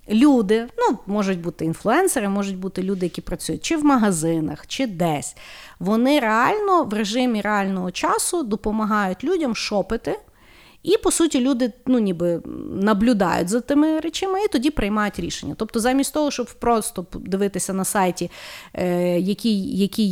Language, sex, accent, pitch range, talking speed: Ukrainian, female, native, 190-275 Hz, 145 wpm